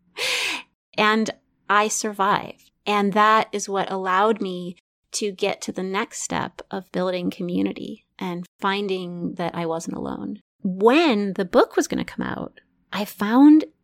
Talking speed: 150 wpm